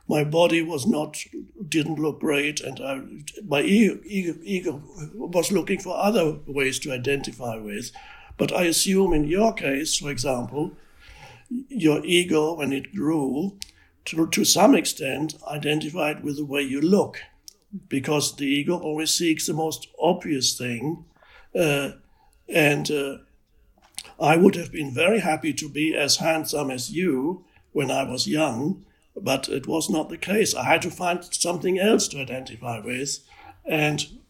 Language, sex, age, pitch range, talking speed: English, male, 60-79, 135-170 Hz, 155 wpm